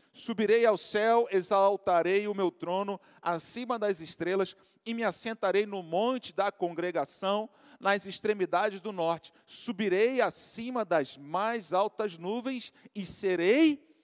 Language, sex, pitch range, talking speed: Portuguese, male, 175-240 Hz, 125 wpm